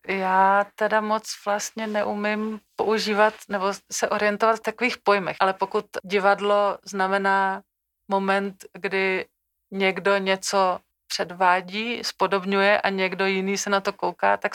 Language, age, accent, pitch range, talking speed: Czech, 30-49, native, 180-200 Hz, 125 wpm